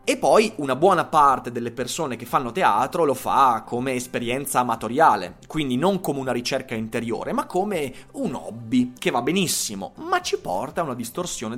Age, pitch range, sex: 30-49, 115-185 Hz, male